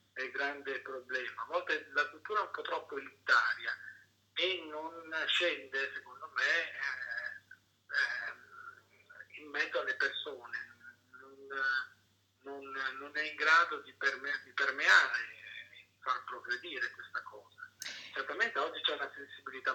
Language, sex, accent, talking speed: Italian, male, native, 130 wpm